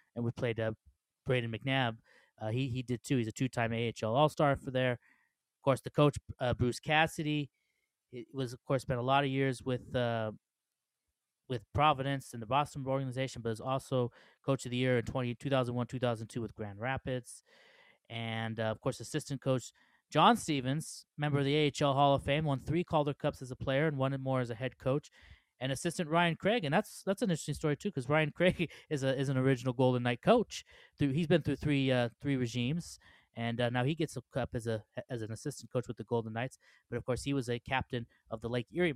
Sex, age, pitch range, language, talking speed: male, 20-39, 120-145 Hz, English, 215 wpm